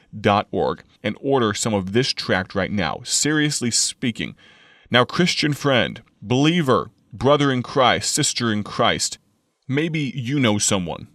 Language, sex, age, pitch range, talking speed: English, male, 30-49, 100-125 Hz, 130 wpm